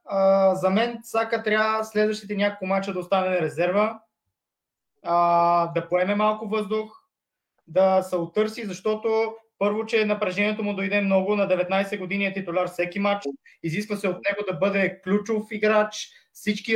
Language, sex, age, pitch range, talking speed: Bulgarian, male, 20-39, 195-215 Hz, 145 wpm